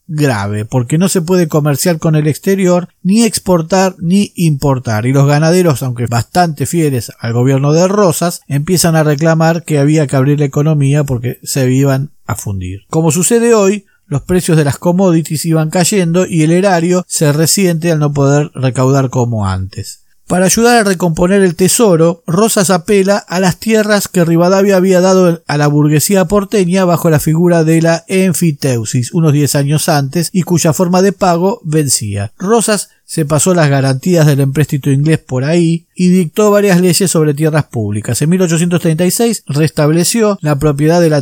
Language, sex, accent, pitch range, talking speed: Spanish, male, Argentinian, 140-185 Hz, 170 wpm